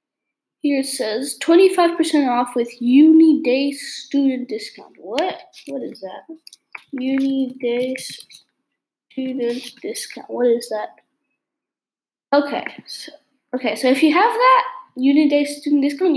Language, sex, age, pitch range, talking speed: English, female, 10-29, 250-310 Hz, 125 wpm